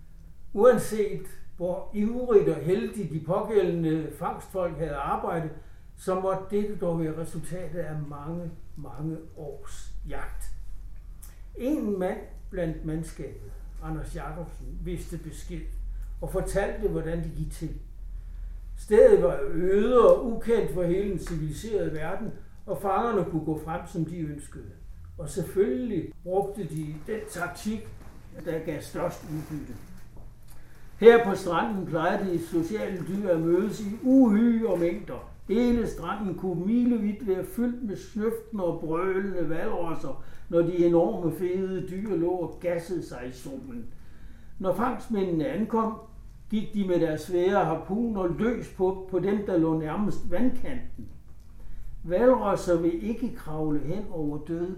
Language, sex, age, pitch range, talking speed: Danish, male, 60-79, 155-200 Hz, 135 wpm